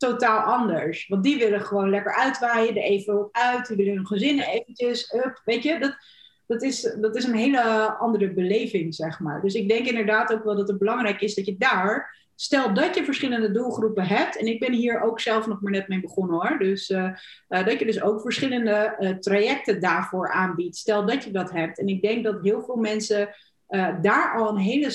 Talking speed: 215 wpm